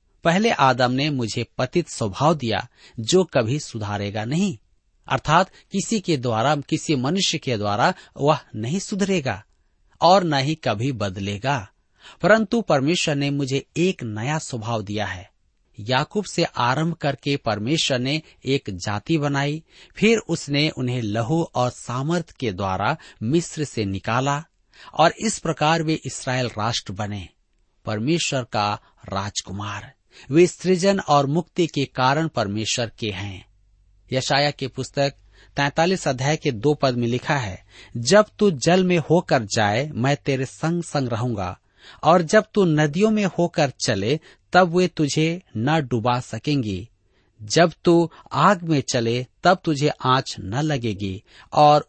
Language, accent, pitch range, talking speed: Hindi, native, 110-160 Hz, 140 wpm